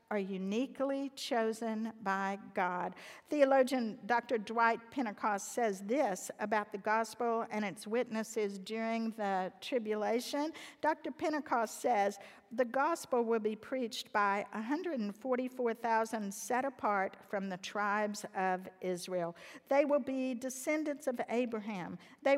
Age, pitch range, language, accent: 50-69, 205-245 Hz, English, American